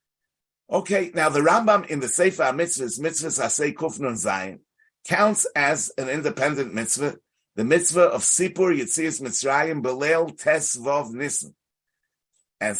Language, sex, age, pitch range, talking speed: English, male, 60-79, 130-165 Hz, 125 wpm